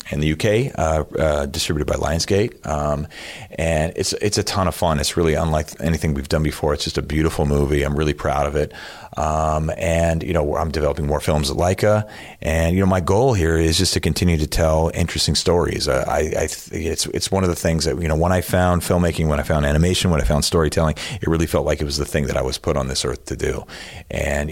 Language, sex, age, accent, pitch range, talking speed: English, male, 30-49, American, 75-85 Hz, 240 wpm